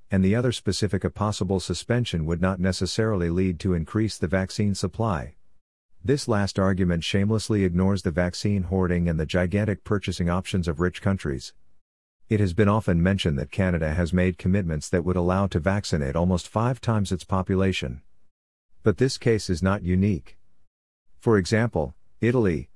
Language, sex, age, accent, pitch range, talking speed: English, male, 50-69, American, 90-105 Hz, 160 wpm